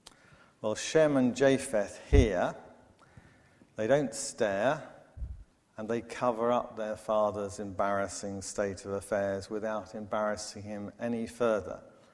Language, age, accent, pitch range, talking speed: English, 50-69, British, 105-125 Hz, 115 wpm